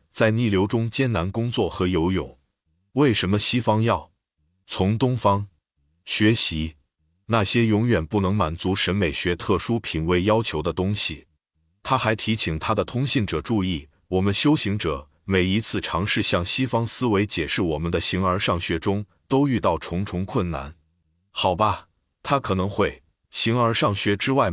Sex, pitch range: male, 85-115 Hz